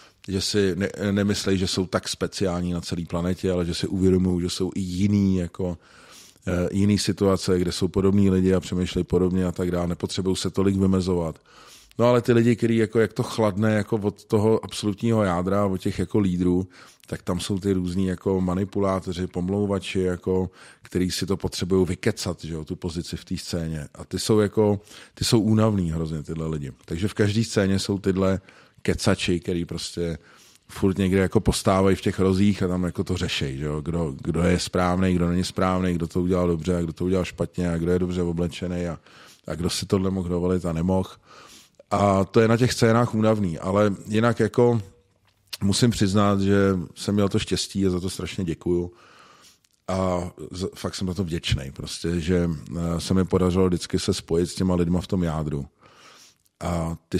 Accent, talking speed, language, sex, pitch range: native, 190 wpm, Czech, male, 90-100 Hz